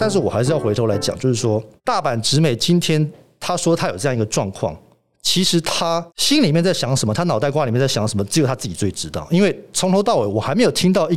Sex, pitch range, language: male, 110-160 Hz, Chinese